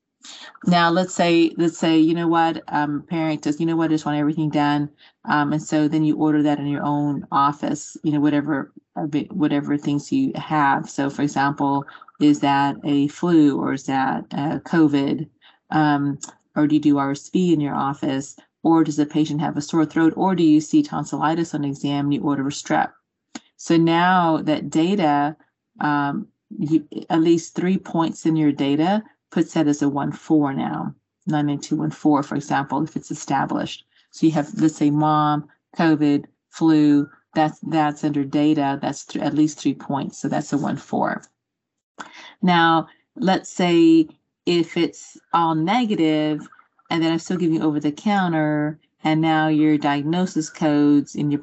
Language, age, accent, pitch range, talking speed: English, 40-59, American, 145-165 Hz, 180 wpm